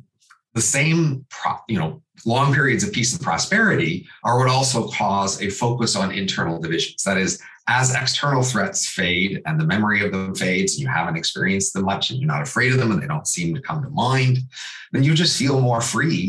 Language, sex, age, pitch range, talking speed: English, male, 40-59, 100-140 Hz, 205 wpm